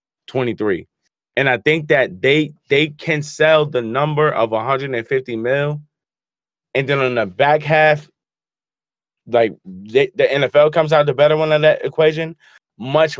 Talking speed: 150 wpm